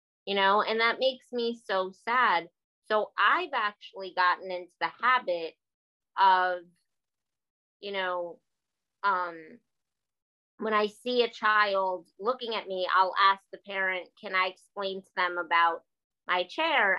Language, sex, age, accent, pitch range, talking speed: English, female, 20-39, American, 185-230 Hz, 140 wpm